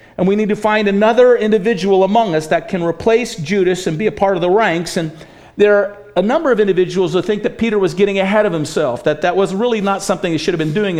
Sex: male